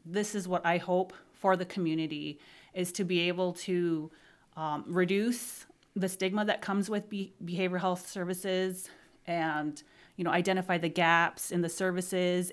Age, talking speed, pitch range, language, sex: 30-49, 155 wpm, 165-190 Hz, English, female